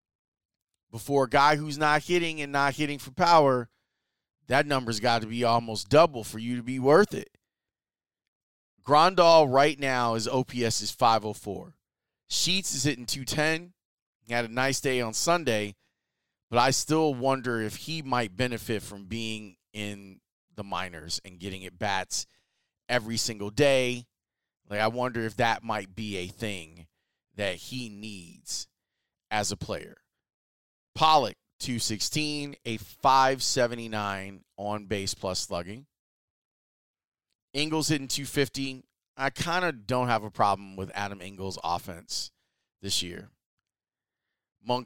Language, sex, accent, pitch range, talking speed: English, male, American, 105-135 Hz, 135 wpm